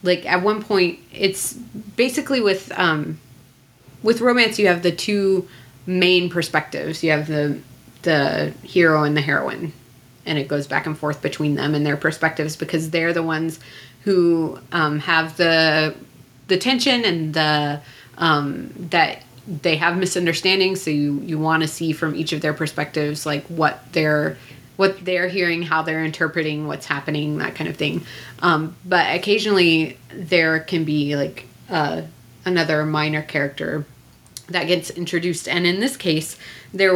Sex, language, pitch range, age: female, English, 150-180 Hz, 30-49